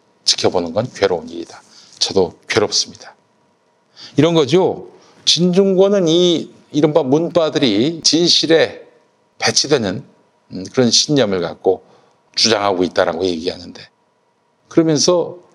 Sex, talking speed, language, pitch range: male, 80 wpm, English, 105-165 Hz